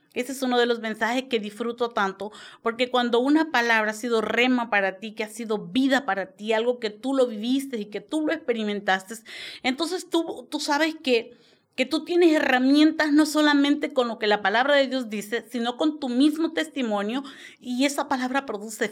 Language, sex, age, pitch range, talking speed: Spanish, female, 40-59, 225-285 Hz, 195 wpm